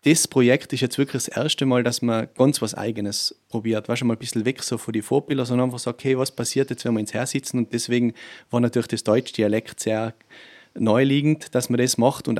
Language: German